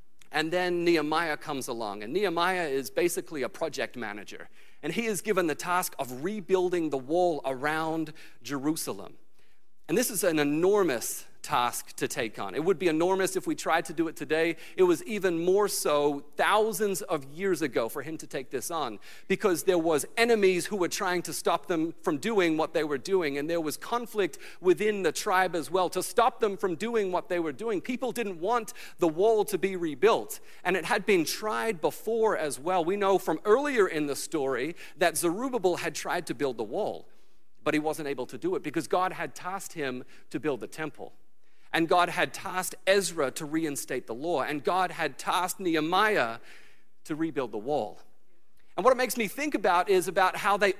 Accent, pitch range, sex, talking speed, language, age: American, 160-210 Hz, male, 200 wpm, English, 40-59